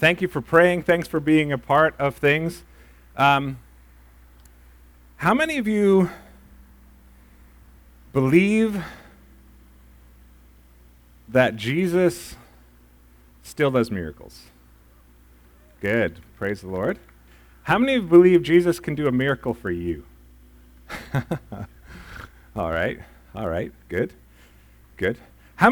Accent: American